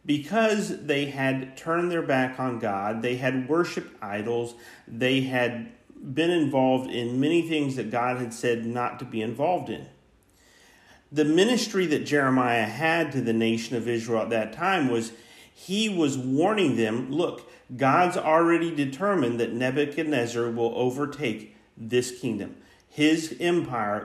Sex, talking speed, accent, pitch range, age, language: male, 145 wpm, American, 115-150 Hz, 50-69, English